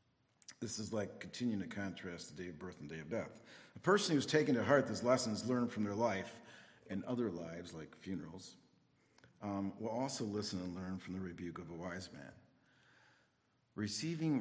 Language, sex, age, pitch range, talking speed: English, male, 50-69, 90-120 Hz, 185 wpm